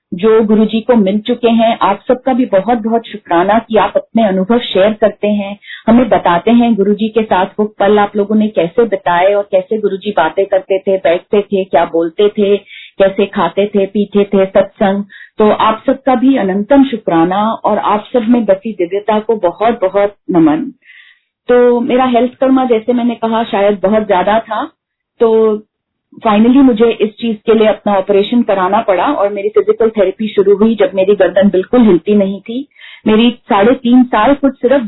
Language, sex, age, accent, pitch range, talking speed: Hindi, female, 40-59, native, 200-235 Hz, 180 wpm